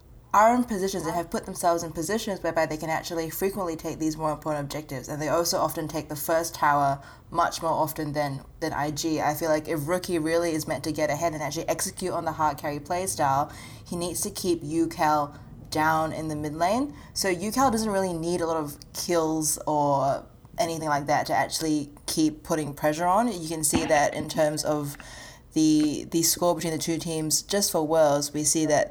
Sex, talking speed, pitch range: female, 210 wpm, 150-175 Hz